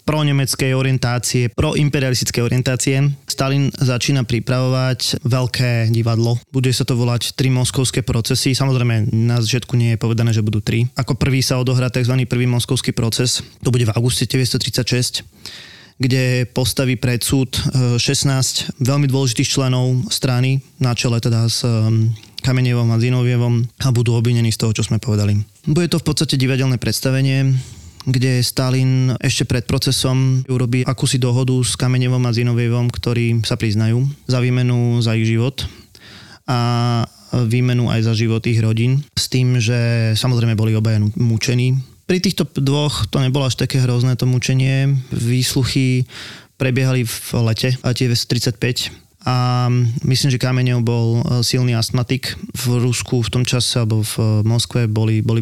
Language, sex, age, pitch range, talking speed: Slovak, male, 20-39, 115-130 Hz, 150 wpm